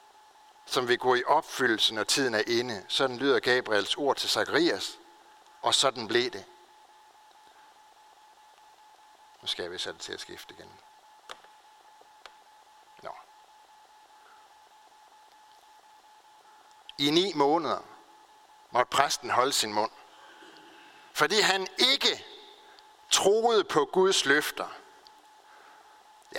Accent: native